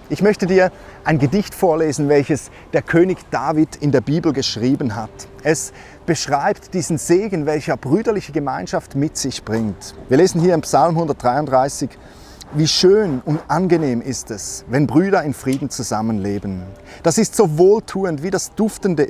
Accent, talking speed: German, 155 wpm